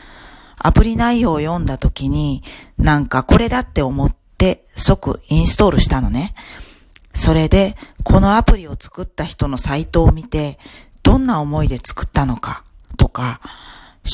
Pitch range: 130-185 Hz